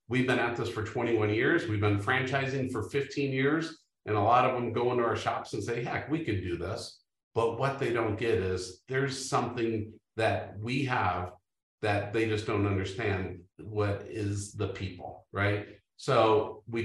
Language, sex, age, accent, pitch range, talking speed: English, male, 50-69, American, 95-115 Hz, 185 wpm